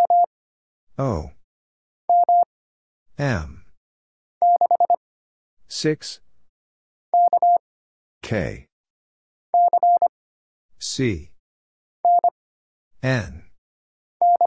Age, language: 50-69, English